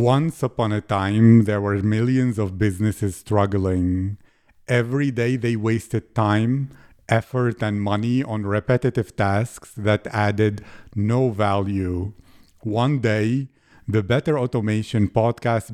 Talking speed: 120 wpm